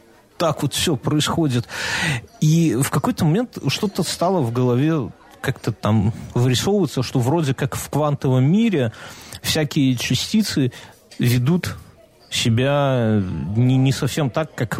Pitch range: 120-155 Hz